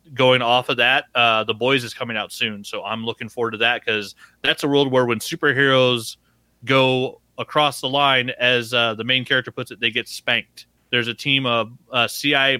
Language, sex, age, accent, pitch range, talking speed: English, male, 30-49, American, 115-135 Hz, 210 wpm